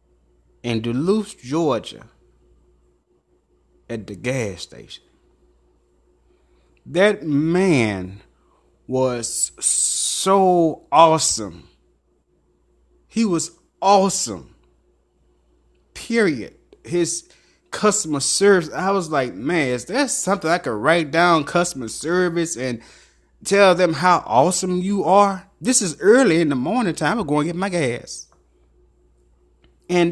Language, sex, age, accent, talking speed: English, male, 30-49, American, 105 wpm